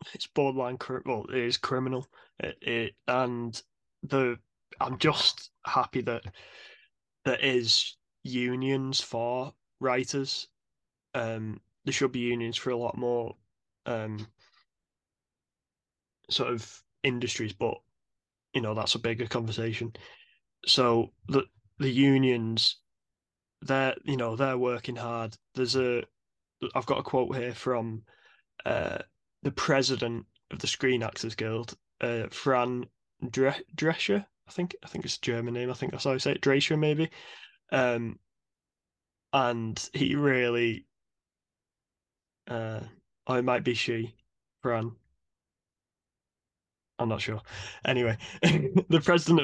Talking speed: 125 wpm